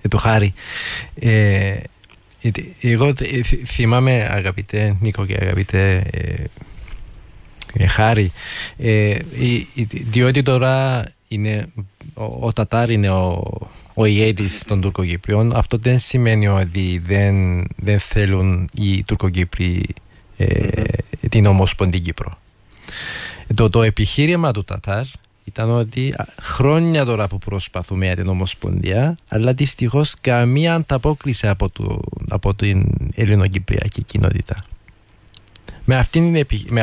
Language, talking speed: Greek, 90 wpm